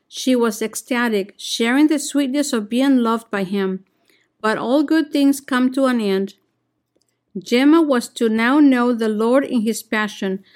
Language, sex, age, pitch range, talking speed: English, female, 50-69, 220-270 Hz, 165 wpm